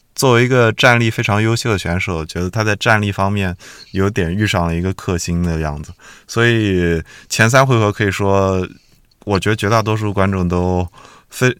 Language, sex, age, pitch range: Chinese, male, 20-39, 85-110 Hz